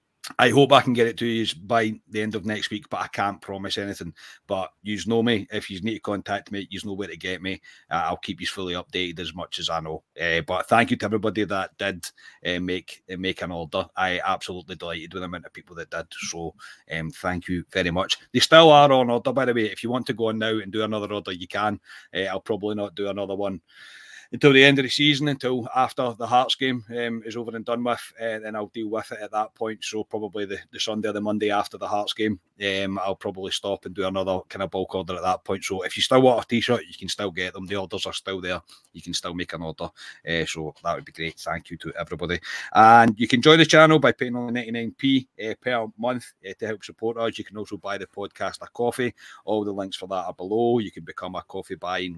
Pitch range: 95-120 Hz